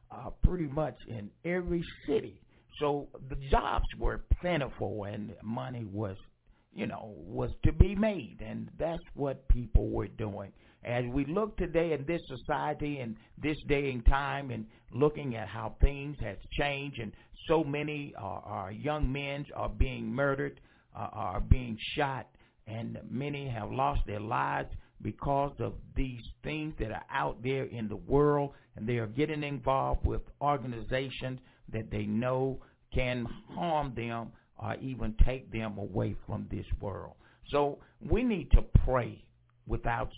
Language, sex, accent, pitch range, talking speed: English, male, American, 110-145 Hz, 150 wpm